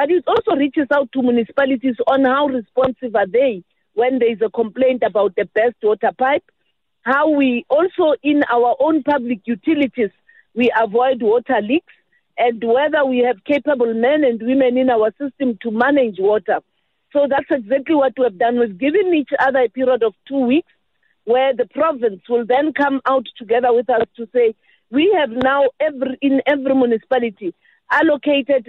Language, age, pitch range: English, 50-69, 235-275 Hz